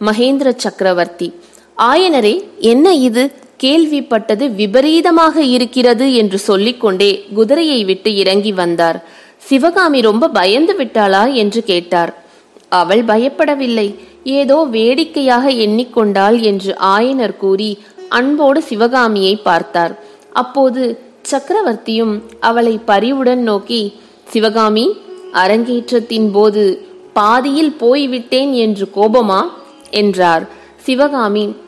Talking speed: 85 wpm